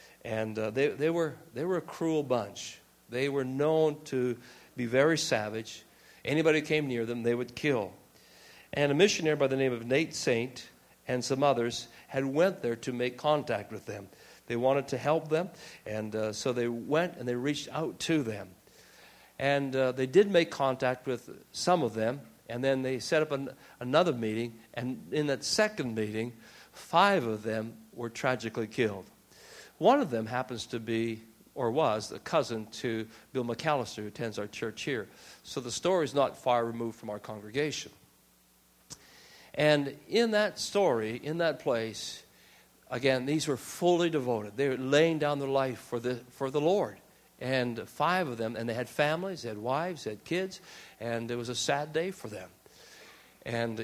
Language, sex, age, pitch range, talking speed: English, male, 60-79, 115-155 Hz, 185 wpm